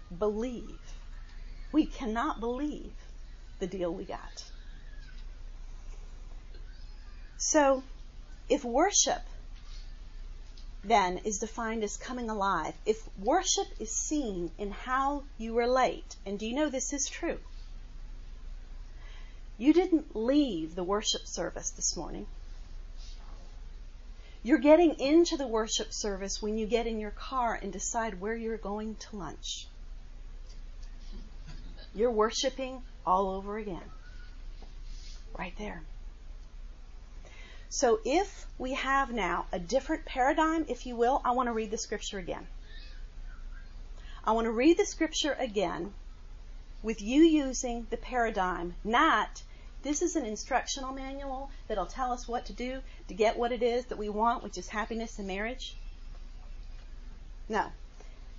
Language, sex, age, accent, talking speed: English, female, 40-59, American, 125 wpm